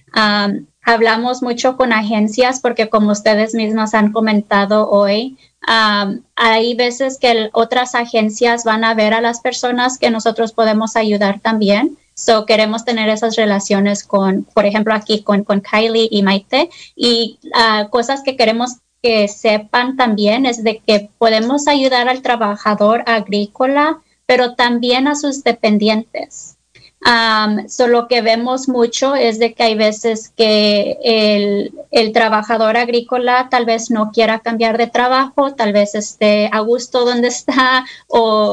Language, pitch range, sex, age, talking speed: English, 215-245 Hz, female, 20-39, 145 wpm